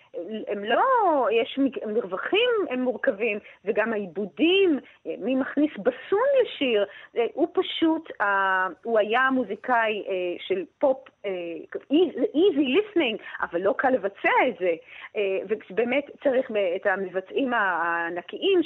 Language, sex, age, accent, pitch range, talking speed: Hebrew, female, 30-49, native, 205-275 Hz, 100 wpm